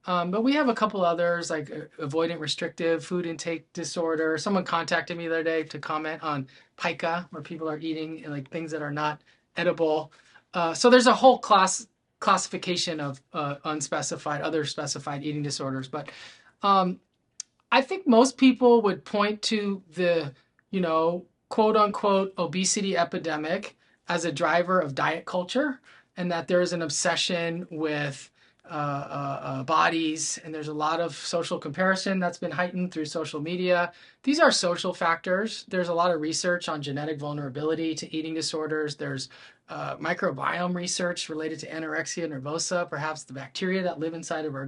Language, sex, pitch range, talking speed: English, male, 155-185 Hz, 170 wpm